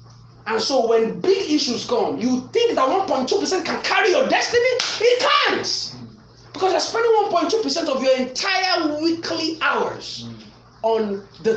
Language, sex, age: English, male, 30-49